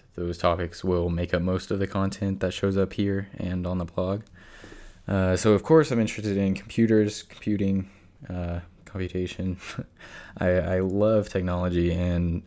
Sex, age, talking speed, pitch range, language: male, 20-39, 160 wpm, 85-95 Hz, English